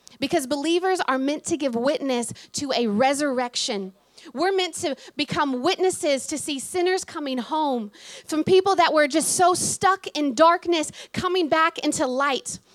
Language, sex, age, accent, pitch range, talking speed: English, female, 30-49, American, 245-315 Hz, 155 wpm